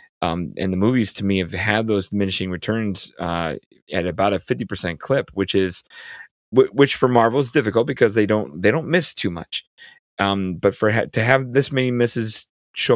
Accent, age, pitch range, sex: American, 30-49, 90-110 Hz, male